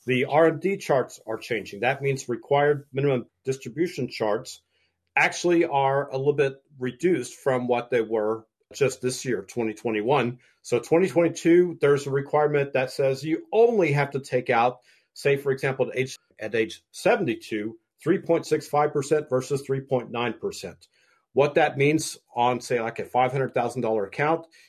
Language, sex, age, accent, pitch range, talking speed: English, male, 50-69, American, 125-160 Hz, 140 wpm